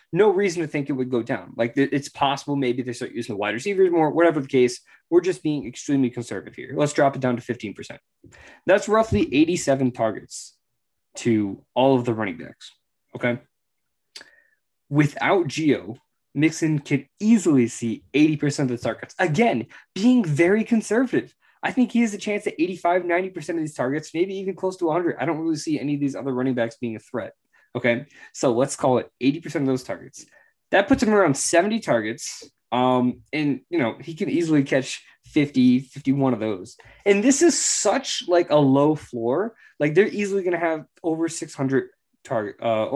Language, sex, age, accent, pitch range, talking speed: English, male, 20-39, American, 125-170 Hz, 185 wpm